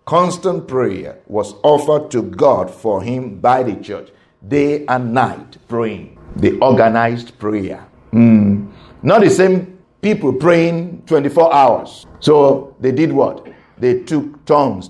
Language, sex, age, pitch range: English, male, 50-69, 110-150 Hz